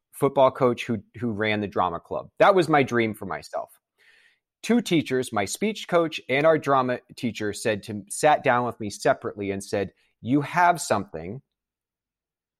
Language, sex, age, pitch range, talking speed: English, male, 30-49, 115-140 Hz, 165 wpm